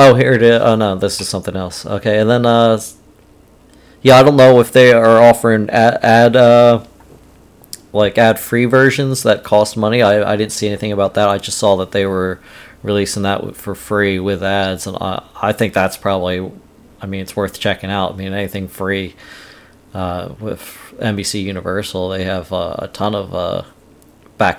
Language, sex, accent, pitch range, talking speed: English, male, American, 95-110 Hz, 190 wpm